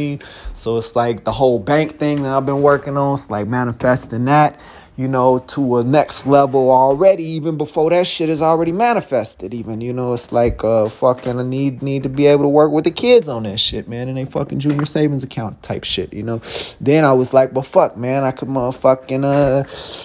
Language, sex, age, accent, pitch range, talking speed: English, male, 30-49, American, 125-145 Hz, 220 wpm